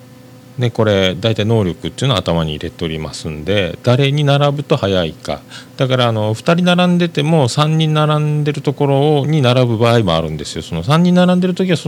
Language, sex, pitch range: Japanese, male, 110-165 Hz